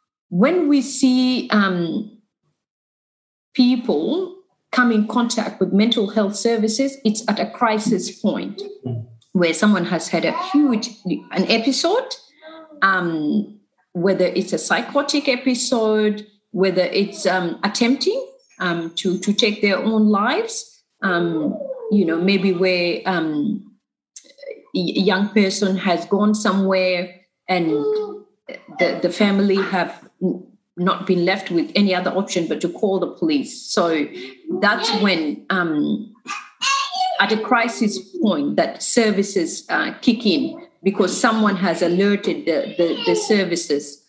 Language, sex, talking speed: English, female, 125 wpm